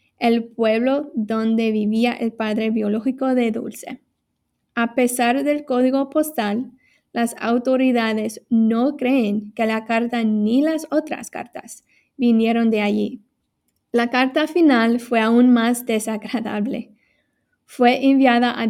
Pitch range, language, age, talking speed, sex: 230-260 Hz, English, 20-39, 120 wpm, female